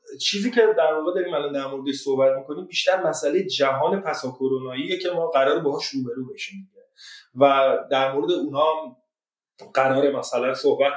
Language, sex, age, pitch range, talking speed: Persian, male, 30-49, 130-205 Hz, 150 wpm